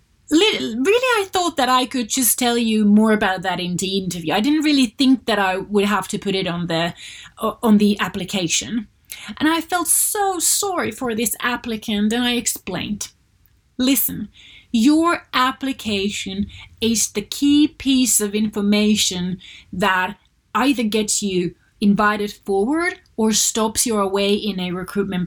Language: English